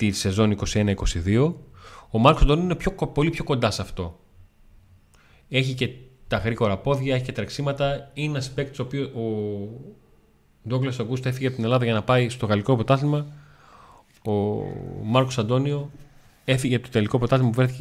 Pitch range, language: 100-135 Hz, Greek